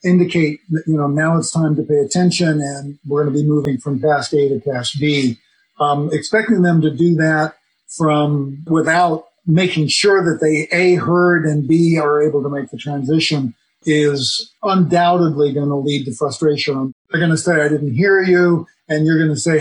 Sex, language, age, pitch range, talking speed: male, English, 50-69, 145-170 Hz, 195 wpm